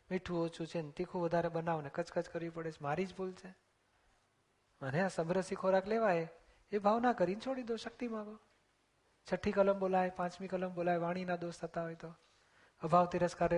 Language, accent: Gujarati, native